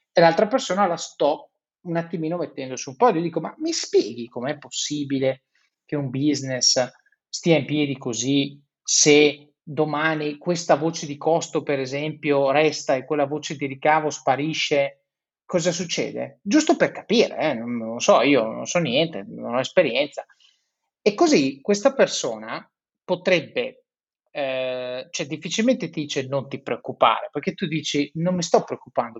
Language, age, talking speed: Italian, 30-49, 155 wpm